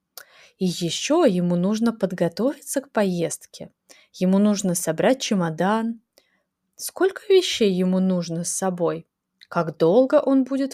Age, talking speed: 20-39, 115 wpm